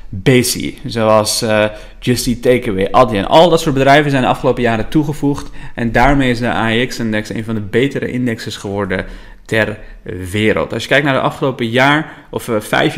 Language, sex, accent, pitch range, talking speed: Dutch, male, Dutch, 105-130 Hz, 185 wpm